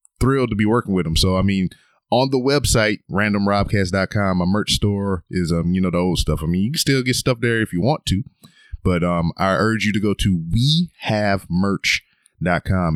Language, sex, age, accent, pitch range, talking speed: English, male, 30-49, American, 90-115 Hz, 205 wpm